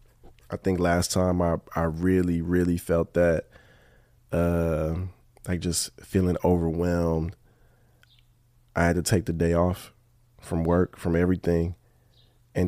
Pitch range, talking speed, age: 85-115 Hz, 130 wpm, 20-39